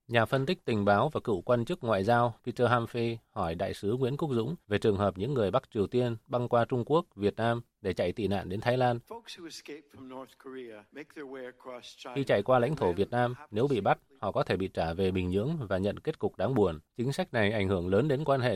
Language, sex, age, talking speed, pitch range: Vietnamese, male, 20-39, 235 wpm, 105-130 Hz